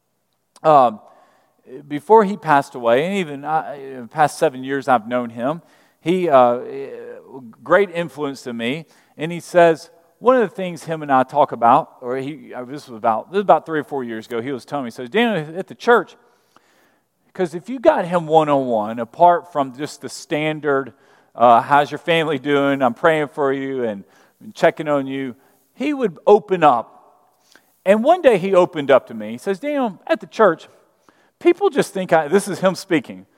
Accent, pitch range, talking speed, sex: American, 140-220 Hz, 200 wpm, male